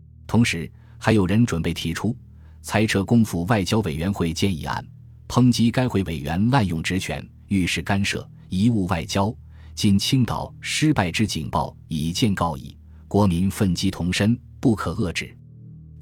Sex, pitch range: male, 85-110 Hz